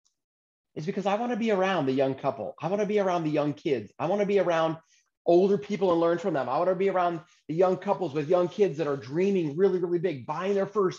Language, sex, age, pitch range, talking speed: English, male, 30-49, 120-175 Hz, 270 wpm